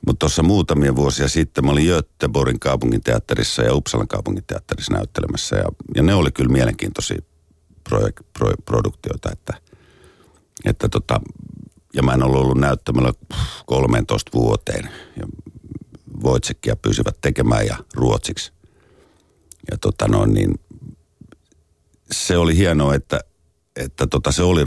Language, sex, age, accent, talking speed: Finnish, male, 50-69, native, 125 wpm